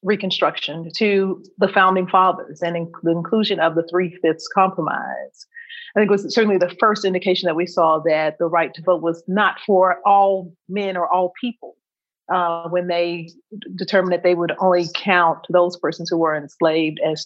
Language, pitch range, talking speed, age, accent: English, 165-200 Hz, 175 wpm, 40-59, American